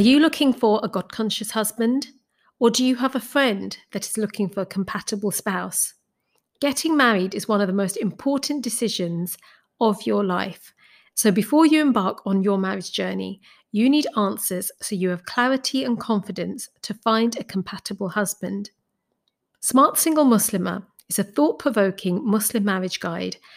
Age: 40-59